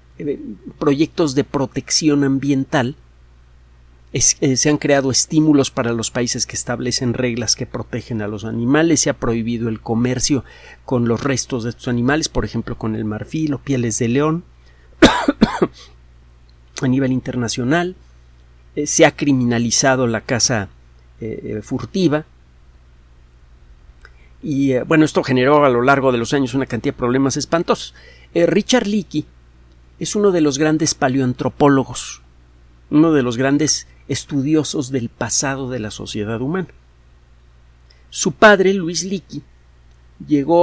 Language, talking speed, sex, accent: Spanish, 135 wpm, male, Mexican